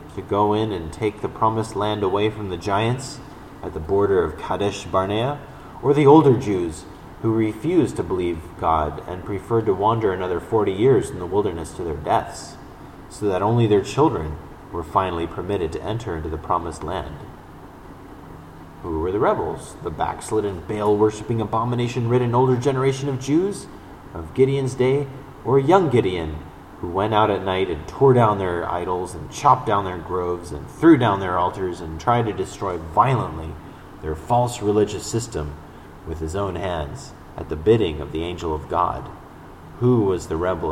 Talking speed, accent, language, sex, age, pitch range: 175 wpm, American, English, male, 30-49, 85-115 Hz